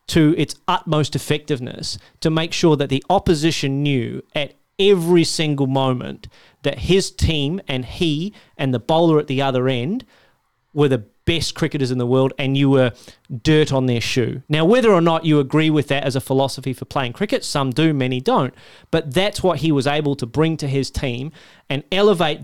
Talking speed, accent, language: 195 wpm, Australian, English